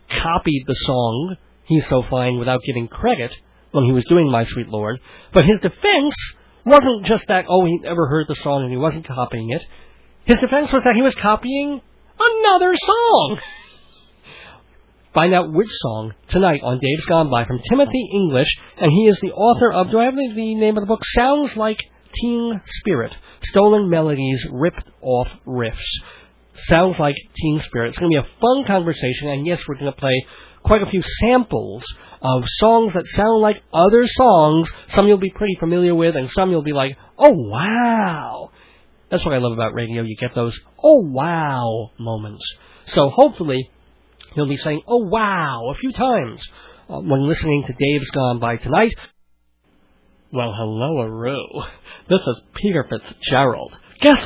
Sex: male